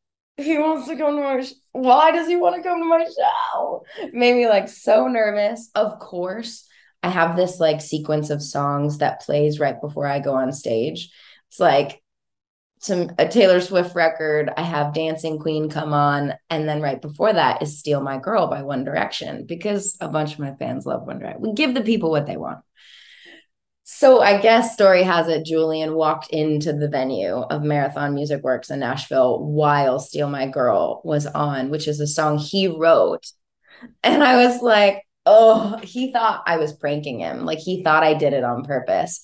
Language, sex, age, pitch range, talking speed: English, female, 20-39, 150-220 Hz, 195 wpm